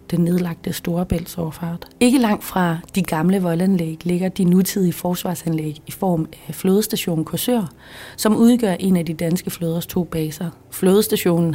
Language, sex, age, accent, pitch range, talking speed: Danish, female, 30-49, native, 160-190 Hz, 150 wpm